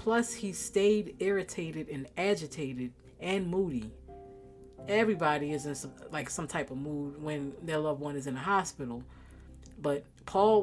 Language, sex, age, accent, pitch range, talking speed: English, female, 40-59, American, 135-195 Hz, 145 wpm